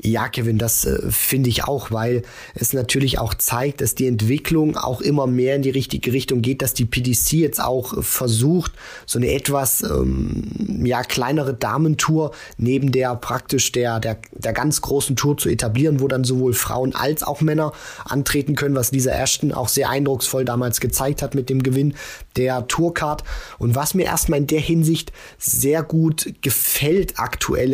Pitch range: 125-145 Hz